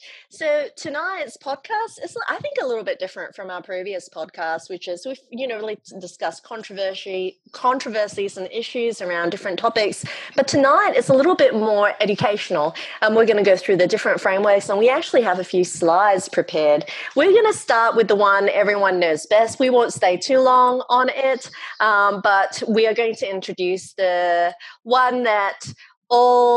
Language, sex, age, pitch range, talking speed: English, female, 30-49, 175-230 Hz, 180 wpm